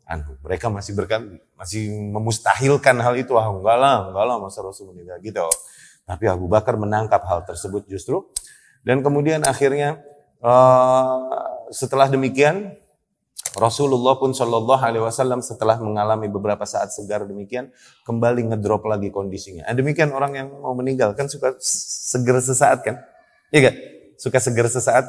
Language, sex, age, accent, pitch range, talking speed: Indonesian, male, 30-49, native, 115-140 Hz, 130 wpm